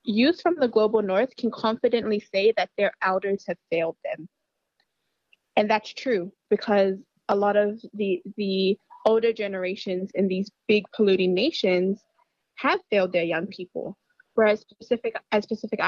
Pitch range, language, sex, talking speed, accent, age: 195-230 Hz, English, female, 145 wpm, American, 20-39